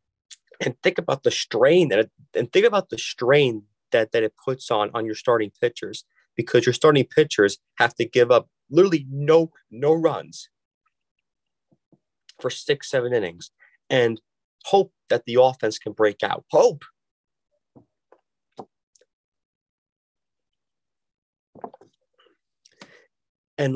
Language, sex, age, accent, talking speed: English, male, 30-49, American, 120 wpm